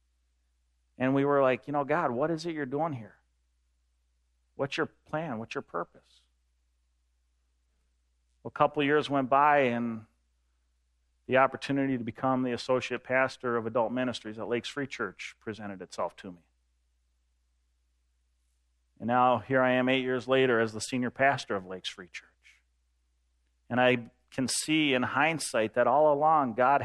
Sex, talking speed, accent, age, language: male, 160 wpm, American, 40-59, English